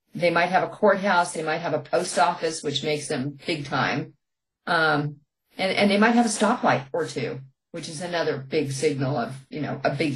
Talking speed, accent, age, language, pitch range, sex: 215 wpm, American, 40-59, English, 150-205 Hz, female